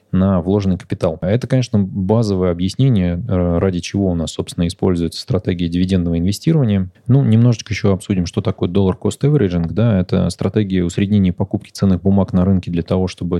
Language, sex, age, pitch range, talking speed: Russian, male, 20-39, 85-105 Hz, 165 wpm